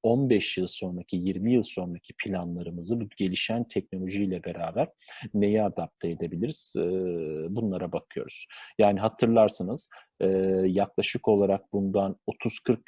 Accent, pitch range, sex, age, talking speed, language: native, 90-115 Hz, male, 40-59, 100 wpm, Turkish